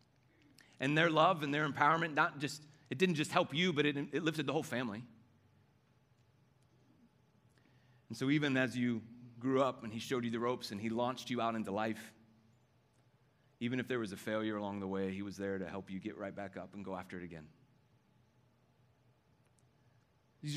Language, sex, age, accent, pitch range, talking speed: English, male, 30-49, American, 115-150 Hz, 190 wpm